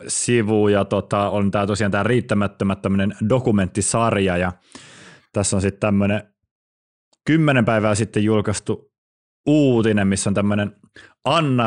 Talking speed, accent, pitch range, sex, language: 120 wpm, native, 100-125 Hz, male, Finnish